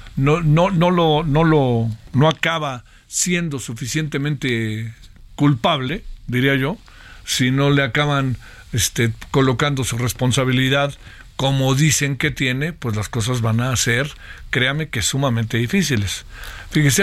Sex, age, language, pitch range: male, 50-69, Spanish, 125-155 Hz